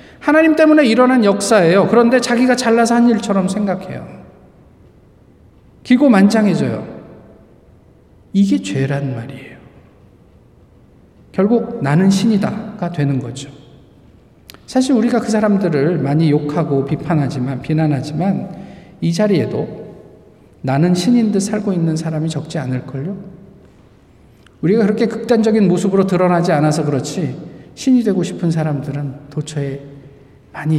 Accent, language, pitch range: native, Korean, 140-195 Hz